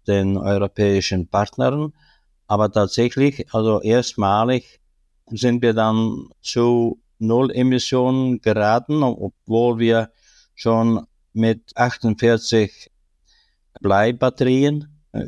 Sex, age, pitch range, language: male, 60-79, 100-120 Hz, German